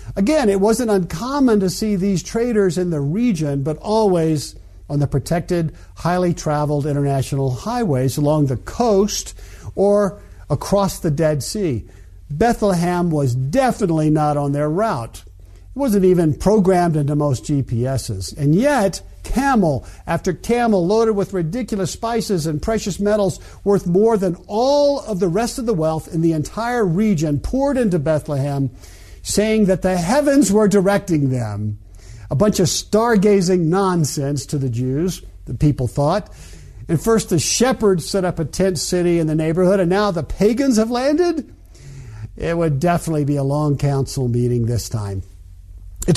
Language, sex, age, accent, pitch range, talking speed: English, male, 50-69, American, 135-200 Hz, 150 wpm